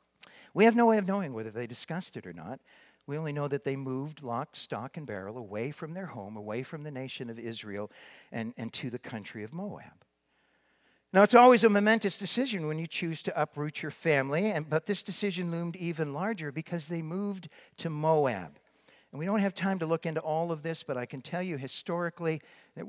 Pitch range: 125-170 Hz